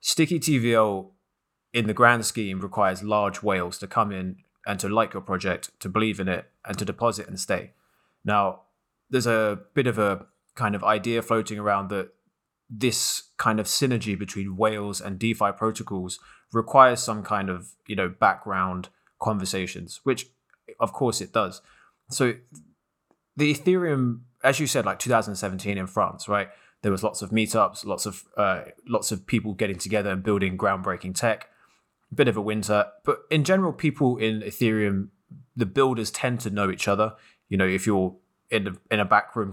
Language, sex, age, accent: English, male, 20-39, British